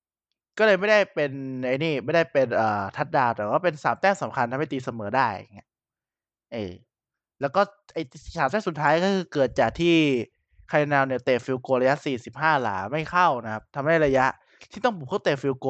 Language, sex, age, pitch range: Thai, male, 20-39, 125-165 Hz